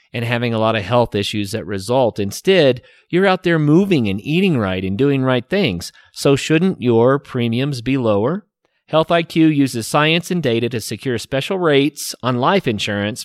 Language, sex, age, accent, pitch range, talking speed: English, male, 30-49, American, 110-150 Hz, 180 wpm